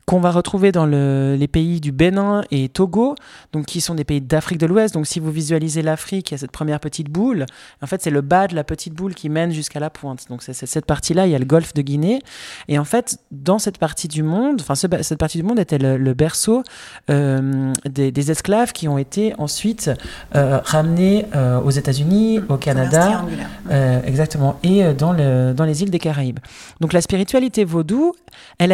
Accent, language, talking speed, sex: French, French, 220 wpm, male